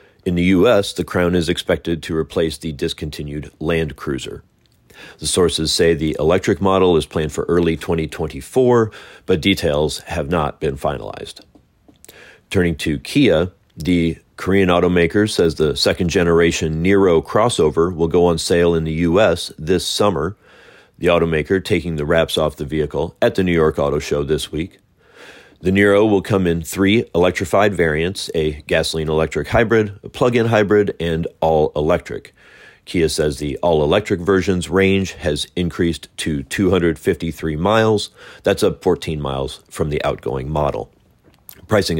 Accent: American